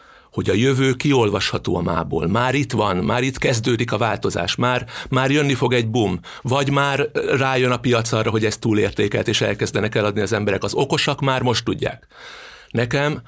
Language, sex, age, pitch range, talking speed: Hungarian, male, 60-79, 105-130 Hz, 180 wpm